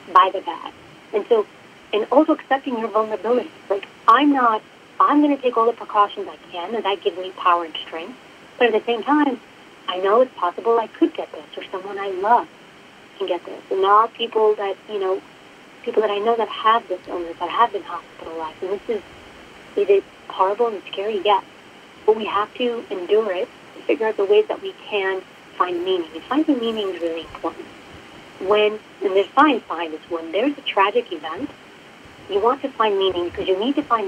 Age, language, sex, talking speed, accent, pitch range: 40-59, English, female, 210 wpm, American, 190-255 Hz